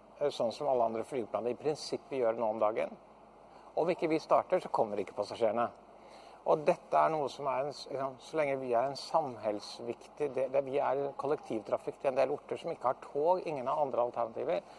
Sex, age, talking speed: male, 60-79, 205 wpm